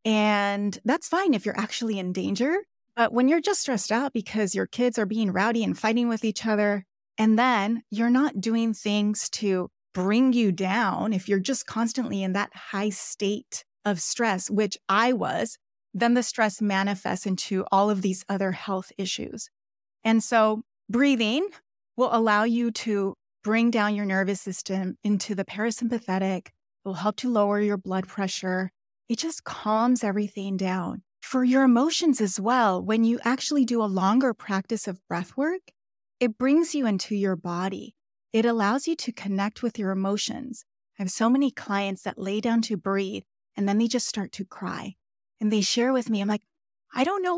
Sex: female